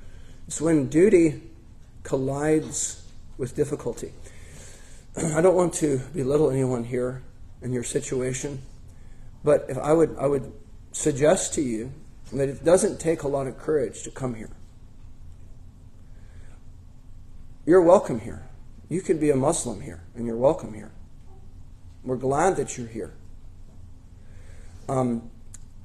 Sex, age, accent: male, 40-59, American